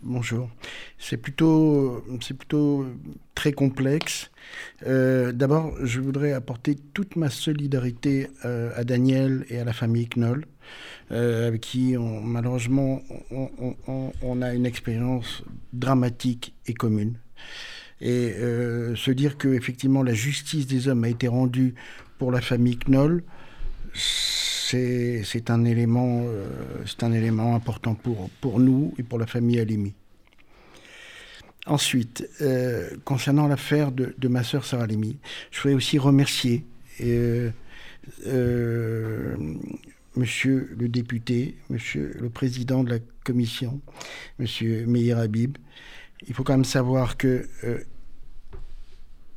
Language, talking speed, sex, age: French, 130 wpm, male, 60-79